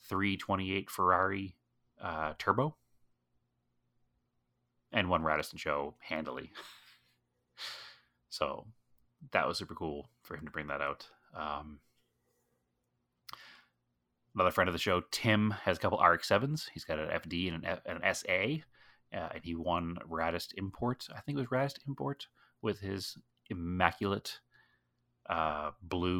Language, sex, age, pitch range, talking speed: English, male, 30-49, 80-105 Hz, 135 wpm